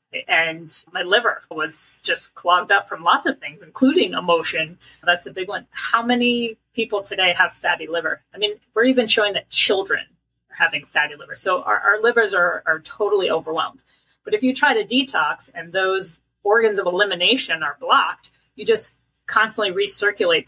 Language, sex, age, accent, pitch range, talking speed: English, female, 30-49, American, 175-250 Hz, 175 wpm